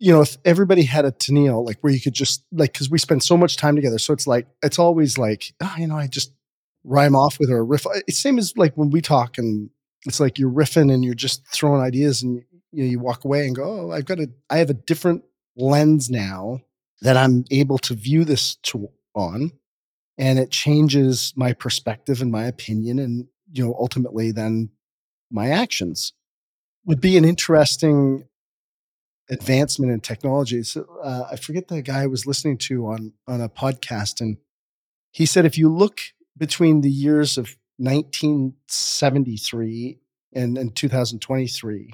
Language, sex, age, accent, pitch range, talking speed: English, male, 30-49, American, 125-150 Hz, 180 wpm